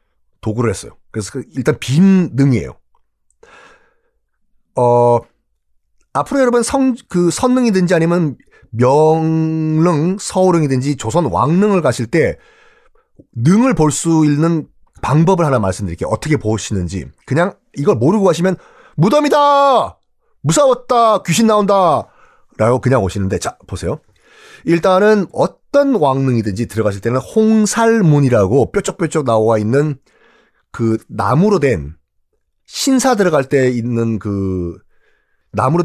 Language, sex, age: Korean, male, 30-49